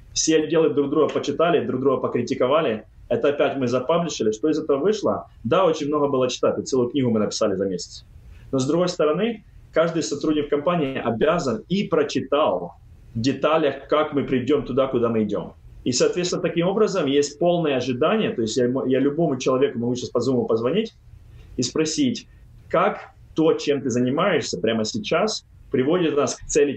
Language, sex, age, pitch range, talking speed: Russian, male, 20-39, 125-165 Hz, 175 wpm